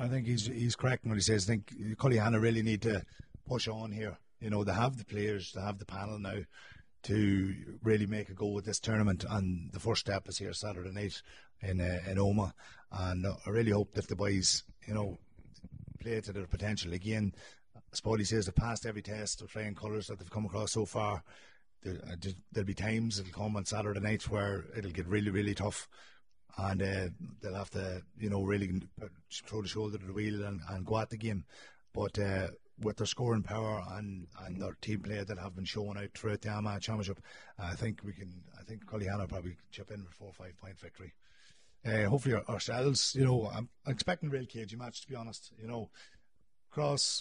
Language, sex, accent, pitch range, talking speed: English, male, Irish, 100-110 Hz, 215 wpm